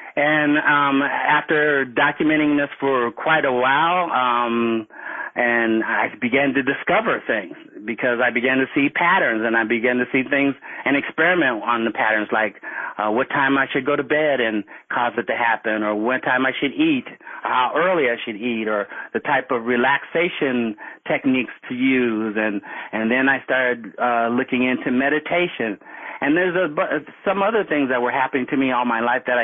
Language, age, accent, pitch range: English, 40-59, American, 120-145 Hz